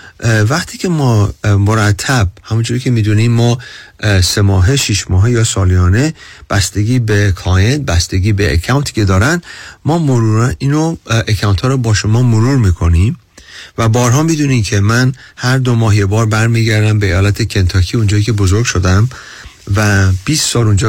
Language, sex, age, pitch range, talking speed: Persian, male, 40-59, 100-130 Hz, 150 wpm